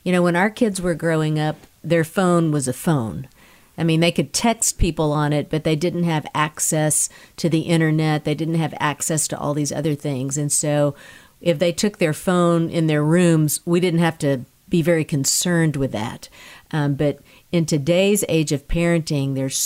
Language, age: English, 50-69